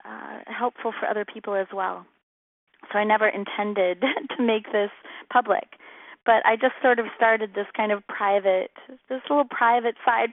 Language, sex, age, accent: English, female, 30-49, American